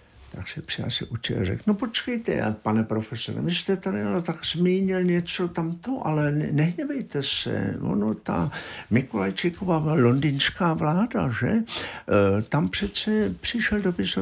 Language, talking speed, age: Czech, 140 wpm, 60-79